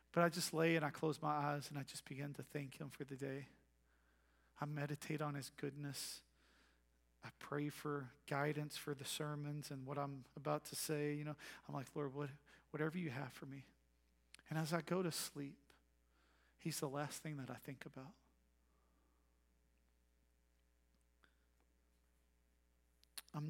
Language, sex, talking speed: English, male, 160 wpm